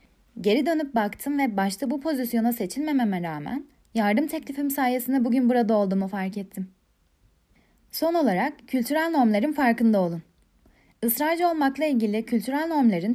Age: 10-29